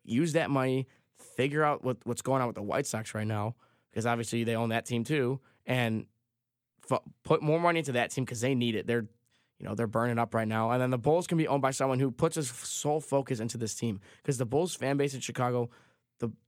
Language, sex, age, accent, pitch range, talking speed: English, male, 20-39, American, 115-140 Hz, 250 wpm